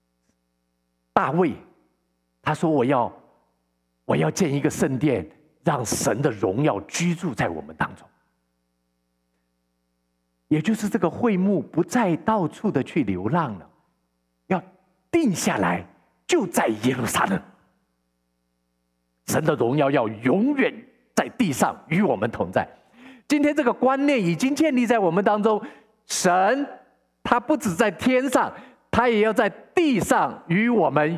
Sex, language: male, Chinese